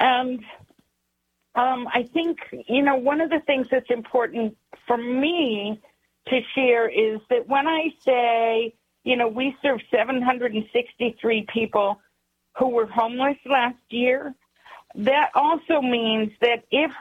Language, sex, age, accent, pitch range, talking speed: English, female, 50-69, American, 215-260 Hz, 130 wpm